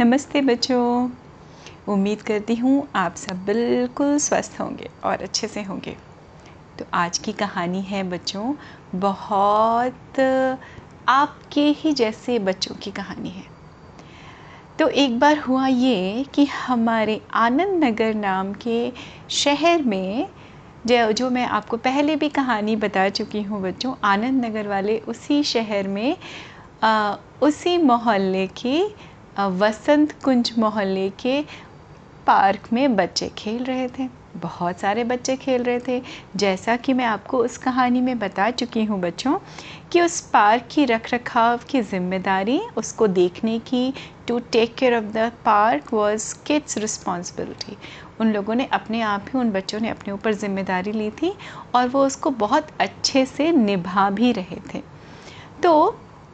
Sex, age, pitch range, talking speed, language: female, 30-49, 205-265 Hz, 140 wpm, Hindi